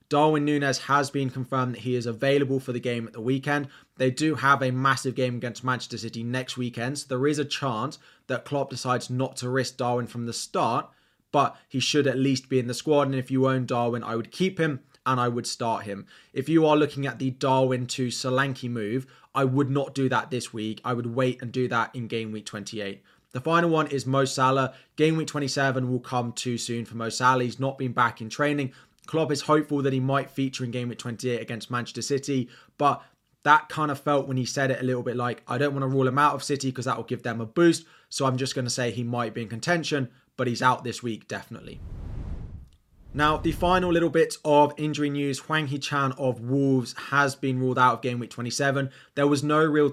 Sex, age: male, 20-39